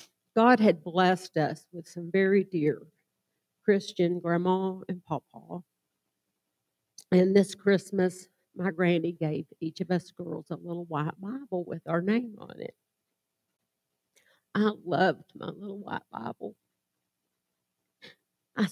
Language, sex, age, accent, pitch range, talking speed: English, female, 50-69, American, 155-200 Hz, 120 wpm